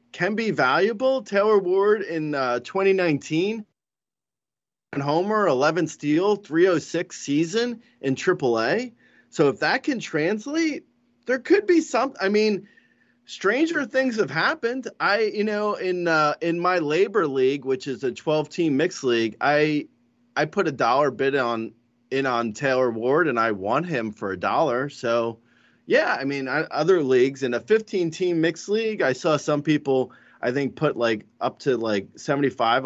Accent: American